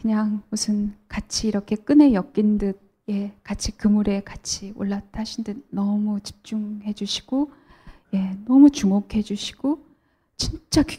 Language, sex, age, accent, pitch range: Korean, female, 10-29, native, 200-235 Hz